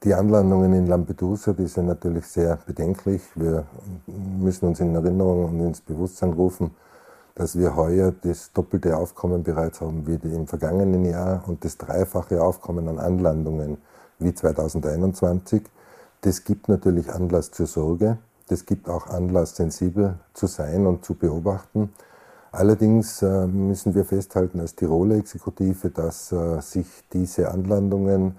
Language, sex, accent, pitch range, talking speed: German, male, Austrian, 85-95 Hz, 140 wpm